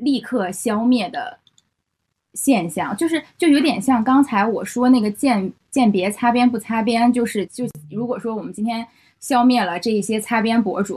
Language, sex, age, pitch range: Chinese, female, 10-29, 205-270 Hz